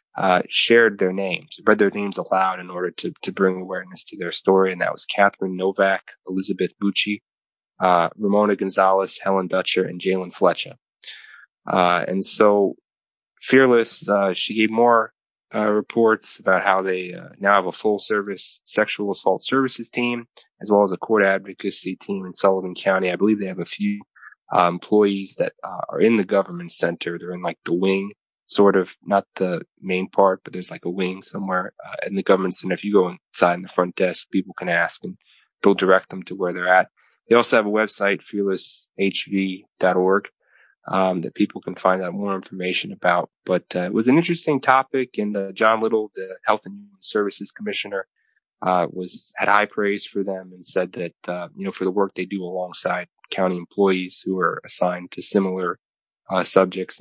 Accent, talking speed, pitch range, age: American, 190 wpm, 90-105 Hz, 20-39